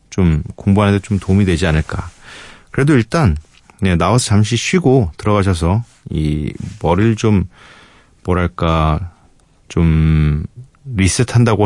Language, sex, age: Korean, male, 40-59